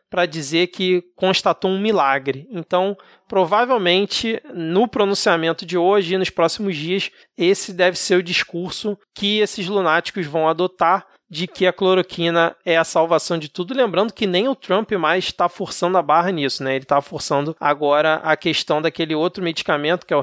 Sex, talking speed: male, 175 wpm